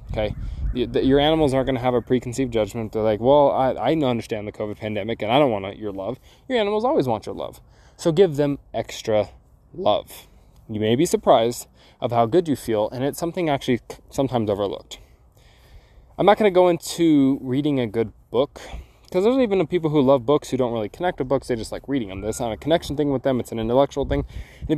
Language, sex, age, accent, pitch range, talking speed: English, male, 20-39, American, 110-140 Hz, 220 wpm